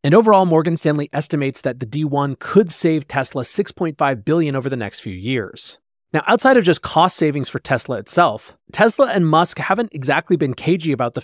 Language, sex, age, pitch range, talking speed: English, male, 30-49, 125-165 Hz, 190 wpm